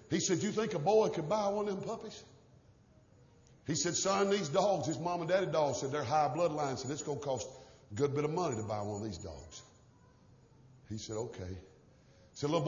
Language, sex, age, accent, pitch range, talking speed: English, male, 50-69, American, 140-210 Hz, 230 wpm